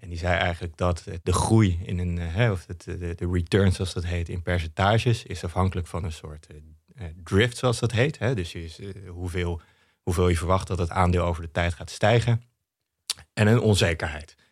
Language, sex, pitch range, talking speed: Dutch, male, 90-110 Hz, 165 wpm